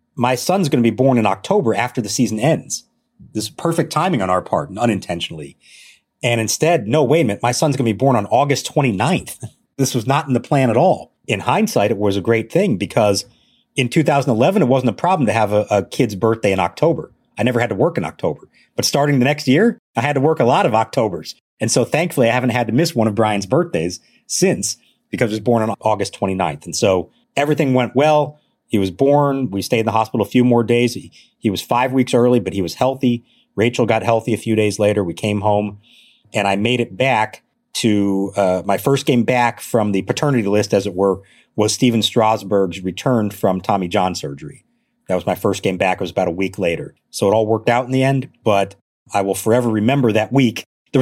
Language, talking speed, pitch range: English, 230 wpm, 105-130 Hz